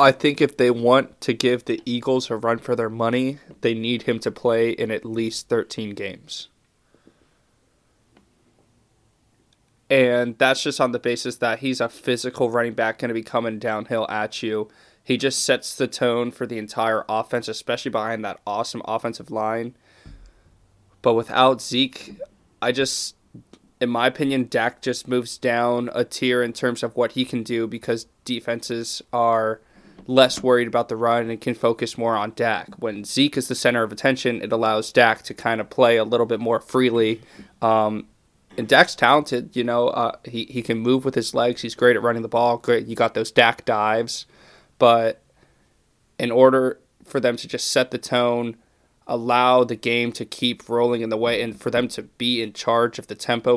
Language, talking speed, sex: English, 185 wpm, male